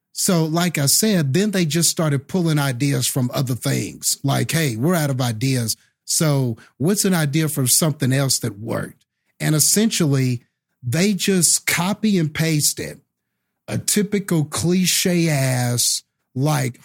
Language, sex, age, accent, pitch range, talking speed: English, male, 50-69, American, 145-190 Hz, 145 wpm